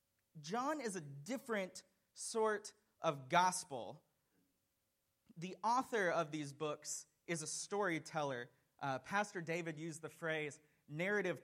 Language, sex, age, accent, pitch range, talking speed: English, male, 30-49, American, 145-190 Hz, 115 wpm